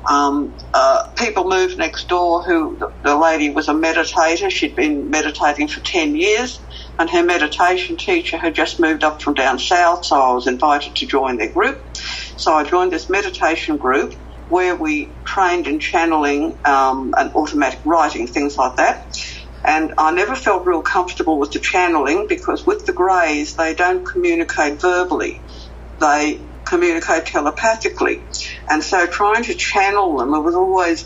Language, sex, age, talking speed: English, female, 60-79, 160 wpm